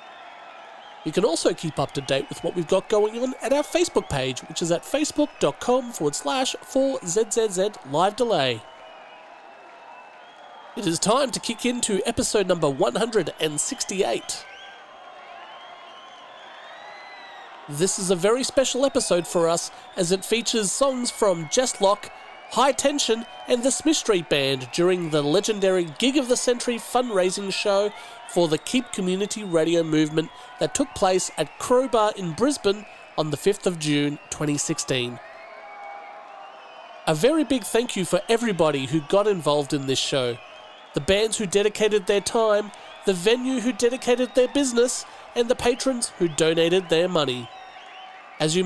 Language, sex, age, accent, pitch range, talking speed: English, male, 30-49, Australian, 165-250 Hz, 145 wpm